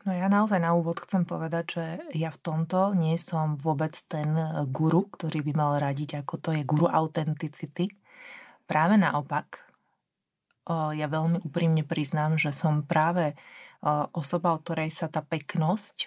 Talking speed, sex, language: 150 wpm, female, Slovak